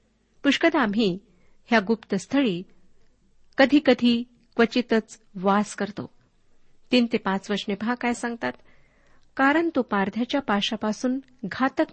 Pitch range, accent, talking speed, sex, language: 205-260 Hz, native, 105 wpm, female, Marathi